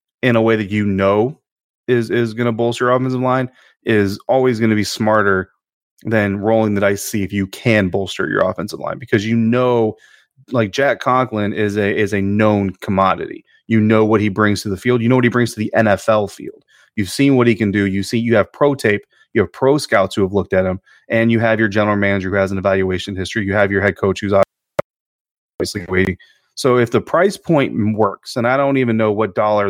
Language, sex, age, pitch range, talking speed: English, male, 30-49, 105-125 Hz, 230 wpm